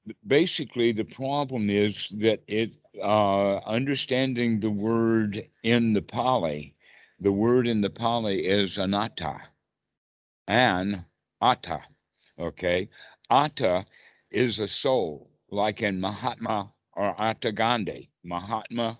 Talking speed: 110 wpm